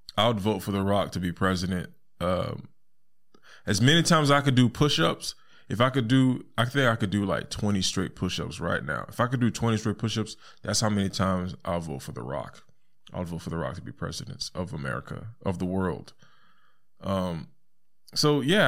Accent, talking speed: American, 205 wpm